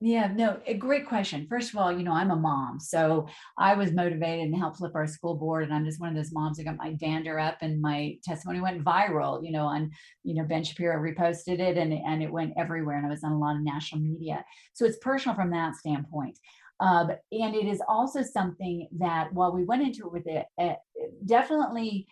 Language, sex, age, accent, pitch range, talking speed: English, female, 40-59, American, 160-195 Hz, 230 wpm